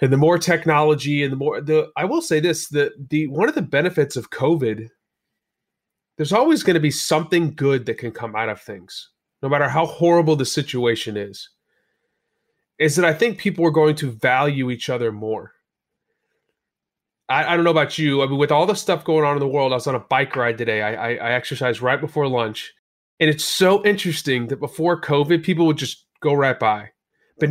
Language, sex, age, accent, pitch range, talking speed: English, male, 30-49, American, 130-165 Hz, 215 wpm